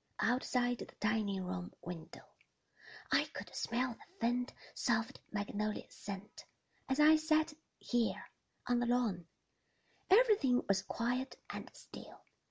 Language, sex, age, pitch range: Chinese, female, 30-49, 205-255 Hz